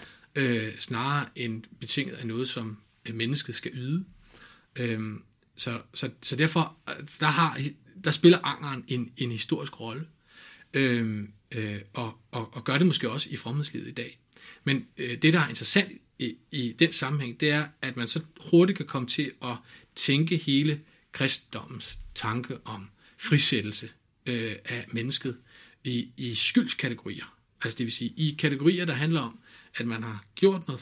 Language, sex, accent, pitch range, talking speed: Danish, male, native, 115-150 Hz, 165 wpm